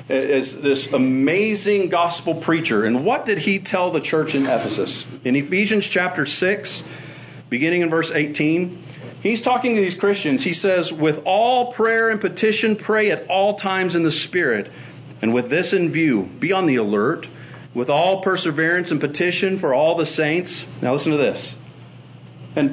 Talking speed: 170 wpm